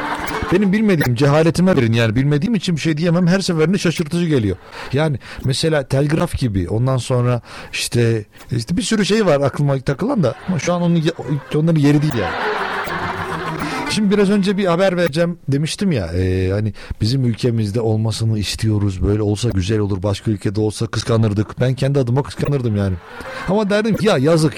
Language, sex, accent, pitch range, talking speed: Turkish, male, native, 115-175 Hz, 170 wpm